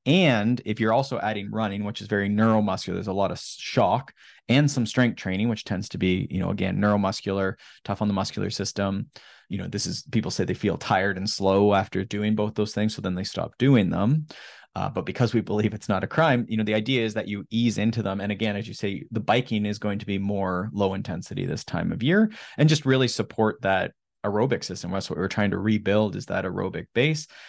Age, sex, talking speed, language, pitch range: 20-39, male, 235 wpm, English, 95-110 Hz